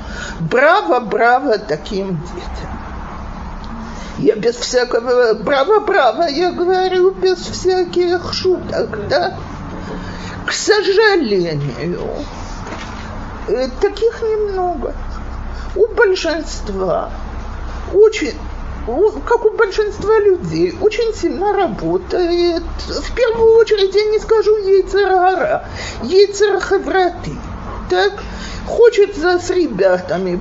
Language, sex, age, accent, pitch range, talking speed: Russian, male, 50-69, native, 245-410 Hz, 80 wpm